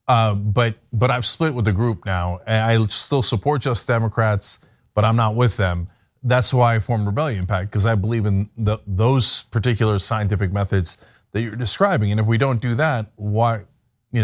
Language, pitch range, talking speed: English, 110-145 Hz, 195 wpm